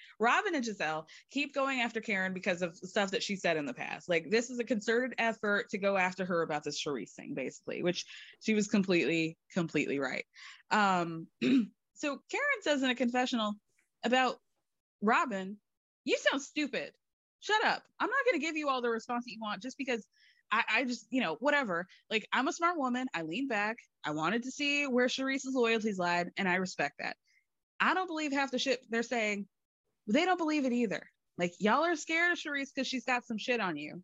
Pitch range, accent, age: 200-265 Hz, American, 20-39